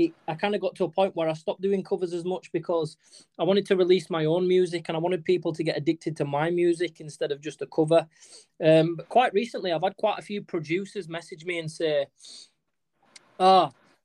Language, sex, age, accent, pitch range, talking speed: English, male, 20-39, British, 145-175 Hz, 220 wpm